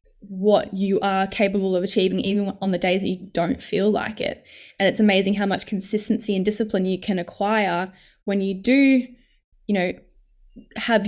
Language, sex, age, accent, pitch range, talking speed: English, female, 10-29, Australian, 195-225 Hz, 180 wpm